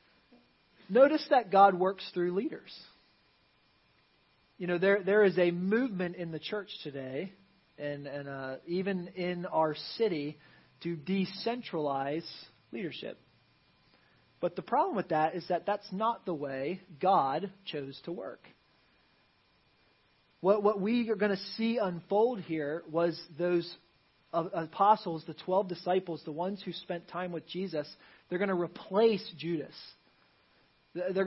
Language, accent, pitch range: English, American, 170-215 Hz